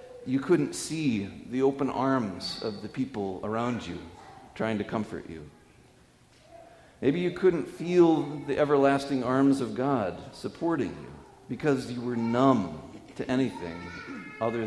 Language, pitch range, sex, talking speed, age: English, 115-155 Hz, male, 135 wpm, 40-59